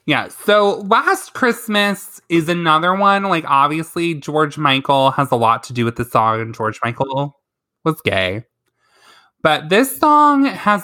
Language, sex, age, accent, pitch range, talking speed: English, male, 20-39, American, 130-175 Hz, 155 wpm